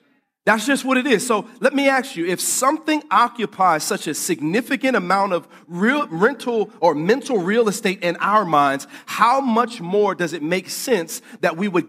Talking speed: 185 wpm